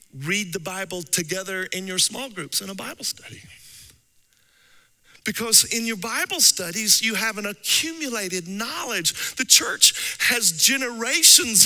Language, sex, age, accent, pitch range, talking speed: English, male, 50-69, American, 180-255 Hz, 135 wpm